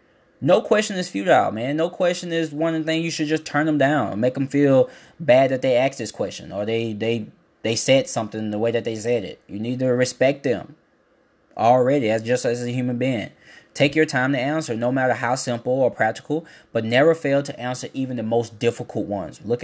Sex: male